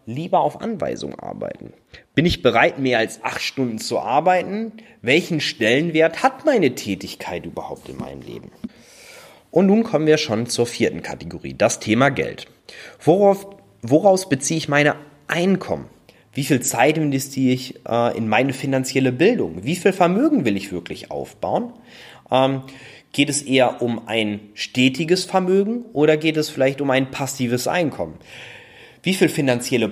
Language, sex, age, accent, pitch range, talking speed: German, male, 30-49, German, 115-165 Hz, 150 wpm